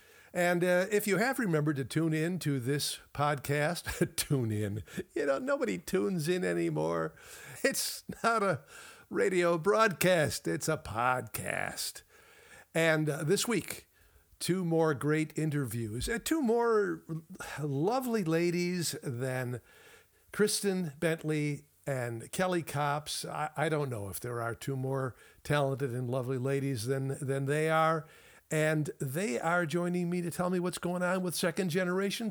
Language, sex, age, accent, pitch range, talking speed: English, male, 50-69, American, 135-180 Hz, 145 wpm